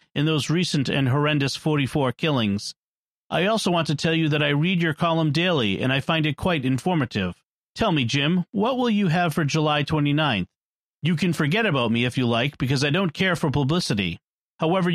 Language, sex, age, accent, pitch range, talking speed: English, male, 40-59, American, 140-180 Hz, 200 wpm